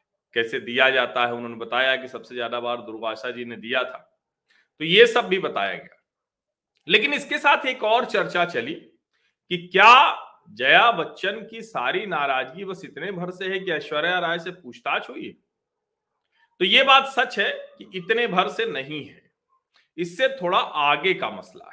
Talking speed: 170 wpm